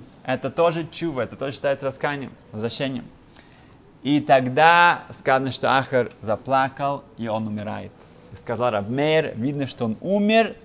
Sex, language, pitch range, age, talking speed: male, Russian, 115-155 Hz, 20-39, 140 wpm